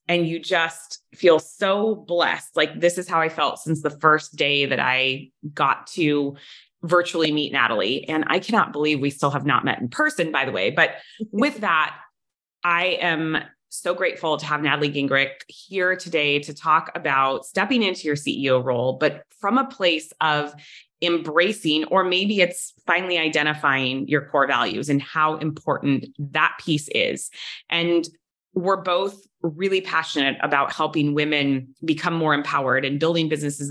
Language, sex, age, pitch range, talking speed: English, female, 20-39, 145-175 Hz, 165 wpm